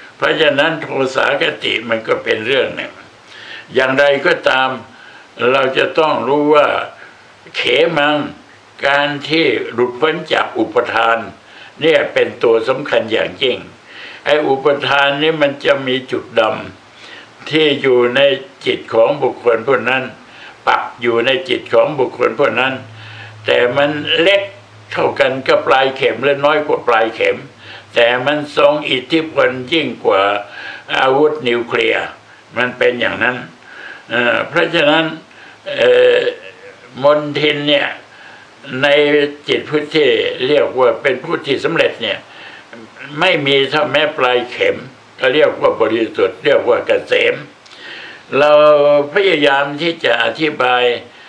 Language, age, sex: Thai, 60-79, male